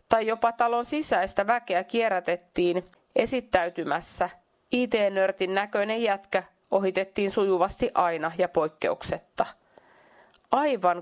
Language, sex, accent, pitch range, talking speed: Finnish, female, native, 185-235 Hz, 85 wpm